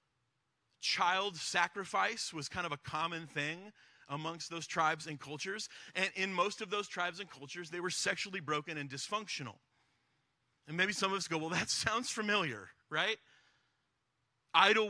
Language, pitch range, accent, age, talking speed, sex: English, 140-195 Hz, American, 30-49, 155 wpm, male